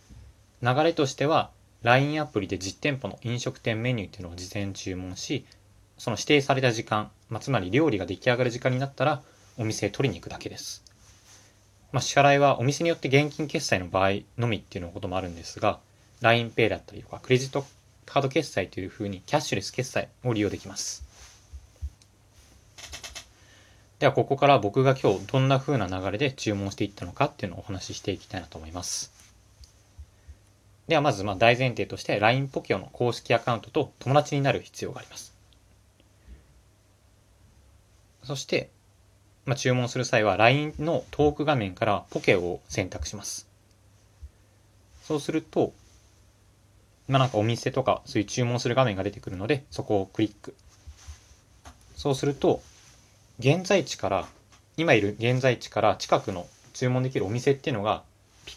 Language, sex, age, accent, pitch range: Japanese, male, 20-39, native, 100-130 Hz